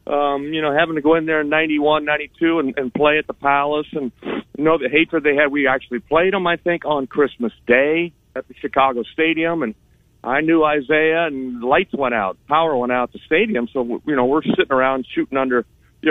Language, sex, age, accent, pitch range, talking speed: English, male, 50-69, American, 120-155 Hz, 225 wpm